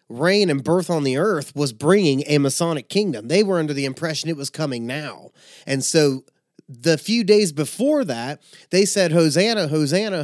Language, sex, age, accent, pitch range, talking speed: English, male, 30-49, American, 135-175 Hz, 180 wpm